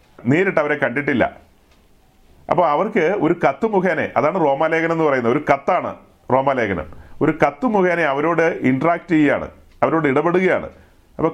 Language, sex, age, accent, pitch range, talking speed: Malayalam, male, 40-59, native, 140-175 Hz, 125 wpm